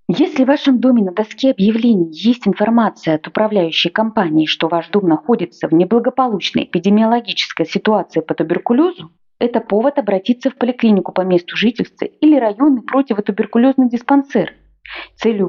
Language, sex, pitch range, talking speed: Russian, female, 180-250 Hz, 140 wpm